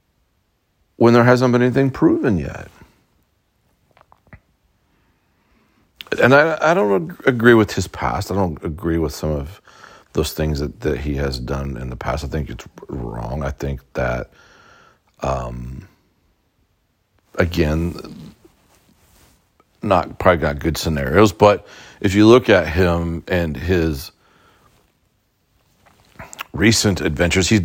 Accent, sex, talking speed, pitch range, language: American, male, 125 wpm, 75-100 Hz, English